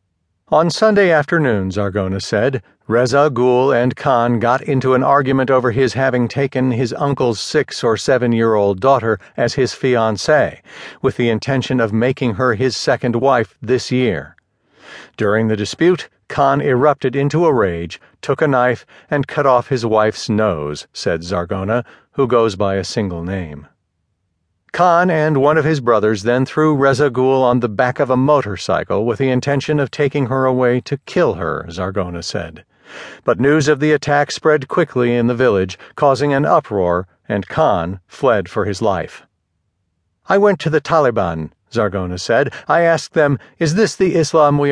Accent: American